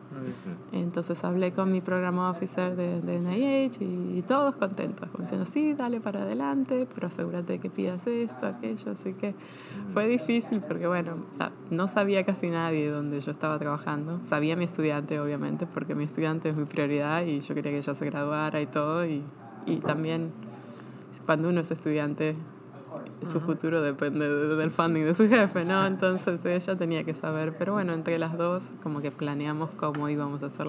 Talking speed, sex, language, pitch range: 180 wpm, female, English, 155-195 Hz